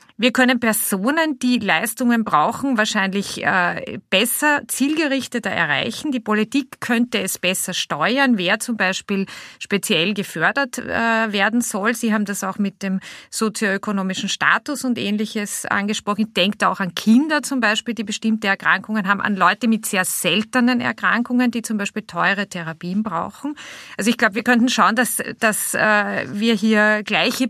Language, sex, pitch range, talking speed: German, female, 200-250 Hz, 150 wpm